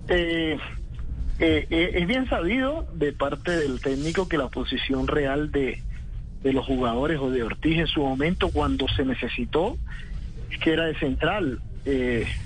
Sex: male